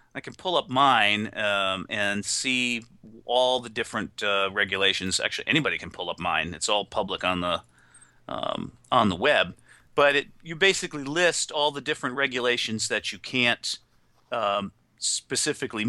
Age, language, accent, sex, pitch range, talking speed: 40-59, English, American, male, 105-140 Hz, 160 wpm